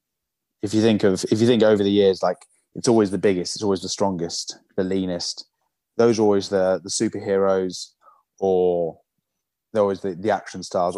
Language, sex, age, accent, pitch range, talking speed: English, male, 20-39, British, 95-110 Hz, 185 wpm